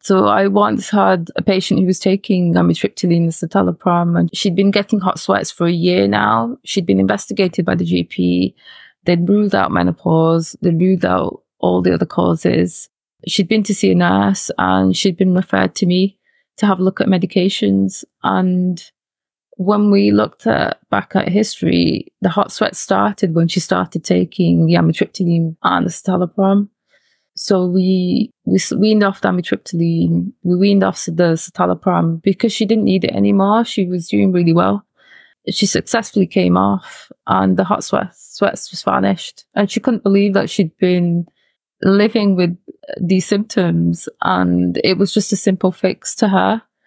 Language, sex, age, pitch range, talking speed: English, female, 20-39, 150-200 Hz, 170 wpm